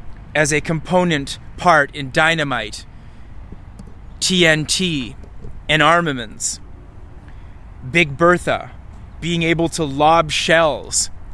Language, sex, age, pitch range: English, male, 20-39, 105-155 Hz